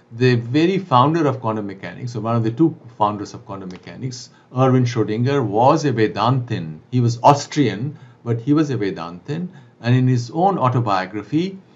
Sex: male